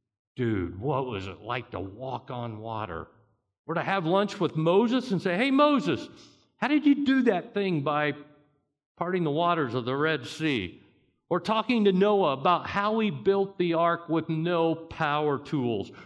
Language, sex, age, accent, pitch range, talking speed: English, male, 50-69, American, 115-180 Hz, 175 wpm